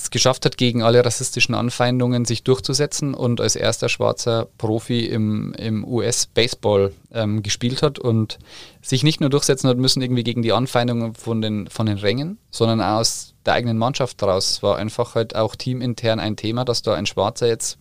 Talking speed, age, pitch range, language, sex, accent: 180 wpm, 30-49, 110-125 Hz, German, male, German